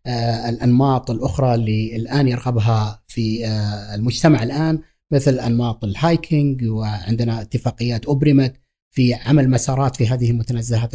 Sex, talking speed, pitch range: male, 110 wpm, 115-155 Hz